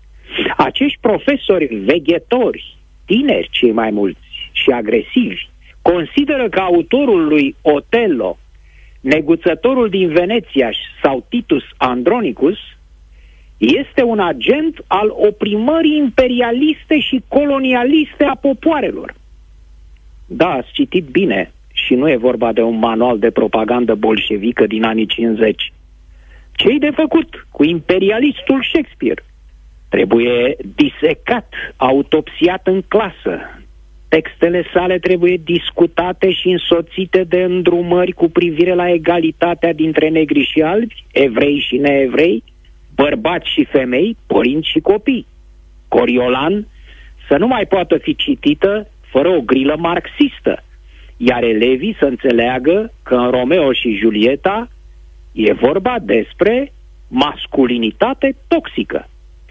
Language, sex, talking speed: Romanian, male, 110 wpm